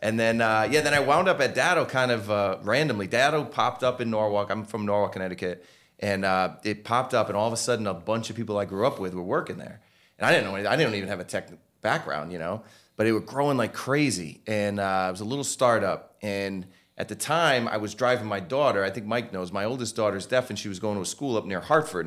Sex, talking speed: male, 265 wpm